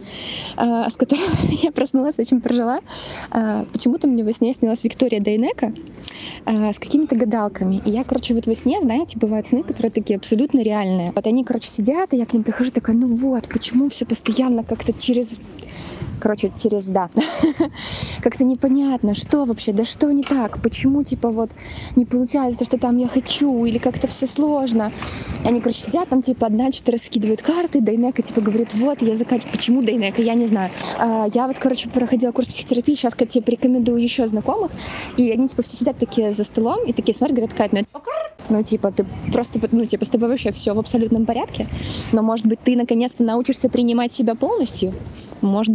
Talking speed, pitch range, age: 185 wpm, 225-265 Hz, 20-39